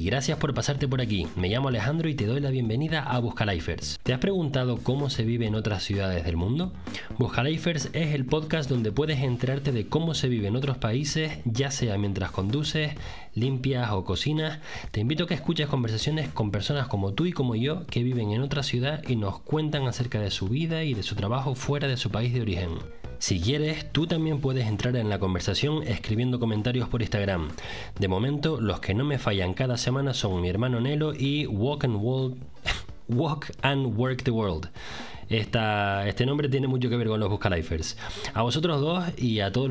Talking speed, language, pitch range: 200 wpm, Spanish, 105-140 Hz